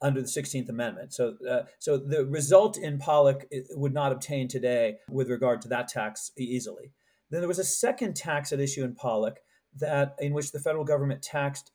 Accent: American